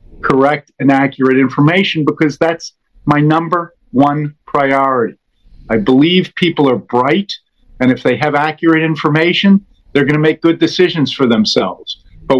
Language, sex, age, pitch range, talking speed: Spanish, male, 50-69, 130-165 Hz, 145 wpm